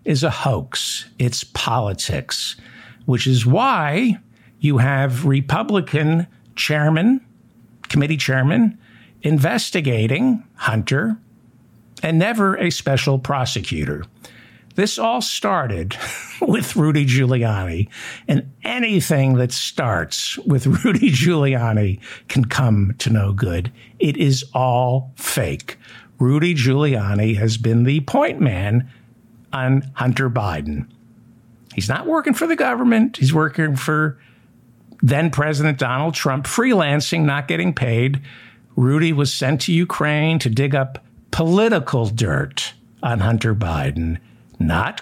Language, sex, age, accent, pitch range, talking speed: English, male, 60-79, American, 115-155 Hz, 110 wpm